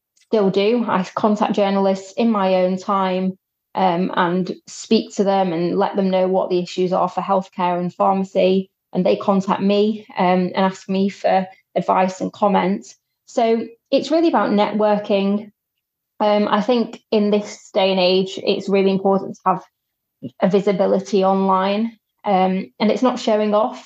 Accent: British